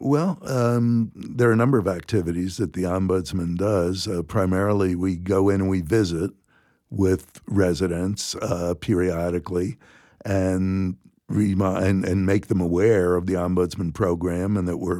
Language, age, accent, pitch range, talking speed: English, 60-79, American, 90-105 Hz, 150 wpm